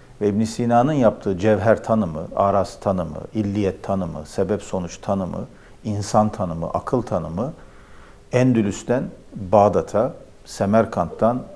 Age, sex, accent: 50-69, male, native